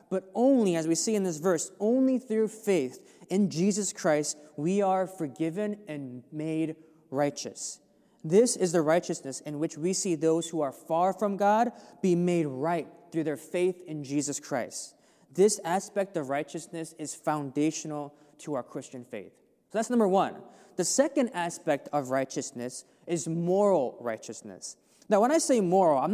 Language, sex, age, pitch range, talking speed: English, male, 20-39, 155-210 Hz, 165 wpm